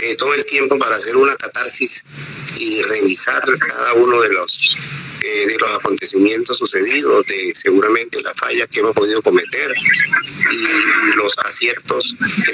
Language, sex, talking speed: Spanish, male, 145 wpm